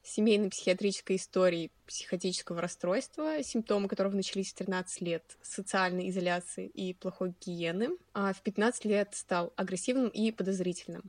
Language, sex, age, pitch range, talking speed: Russian, female, 20-39, 185-230 Hz, 130 wpm